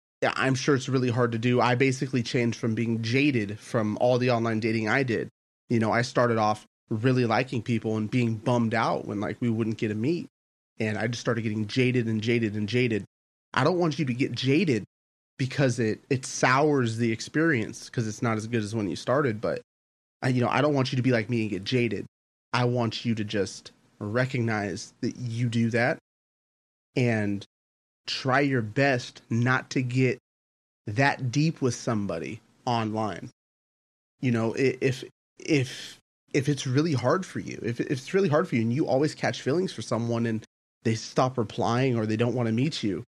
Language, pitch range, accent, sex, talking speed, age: English, 110-130 Hz, American, male, 200 wpm, 30-49